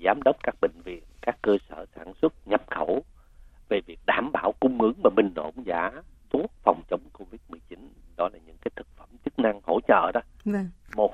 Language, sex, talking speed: Vietnamese, male, 210 wpm